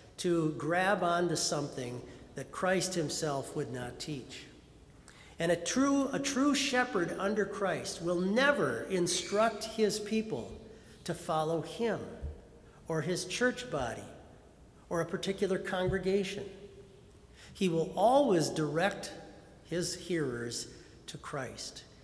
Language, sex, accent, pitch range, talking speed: English, male, American, 150-190 Hz, 110 wpm